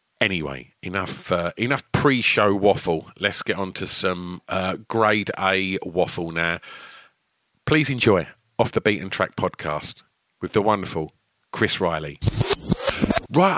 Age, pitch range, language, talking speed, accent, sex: 40-59, 100-155 Hz, English, 135 wpm, British, male